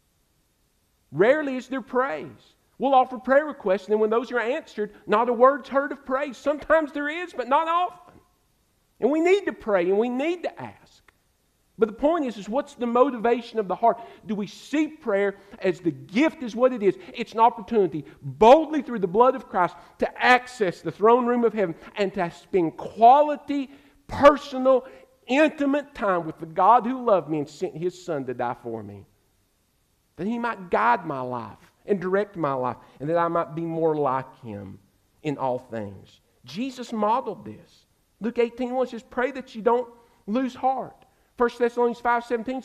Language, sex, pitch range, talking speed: English, male, 180-255 Hz, 185 wpm